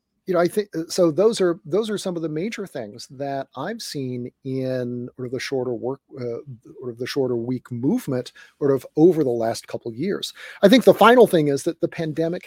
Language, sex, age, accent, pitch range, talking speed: English, male, 40-59, American, 135-170 Hz, 220 wpm